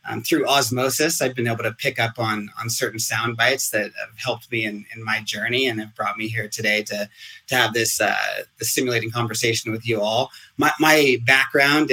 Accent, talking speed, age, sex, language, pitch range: American, 210 wpm, 30-49, male, English, 110-130 Hz